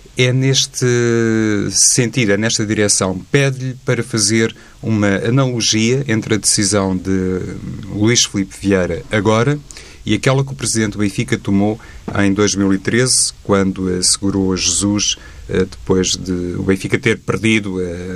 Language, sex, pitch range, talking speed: Portuguese, male, 95-120 Hz, 130 wpm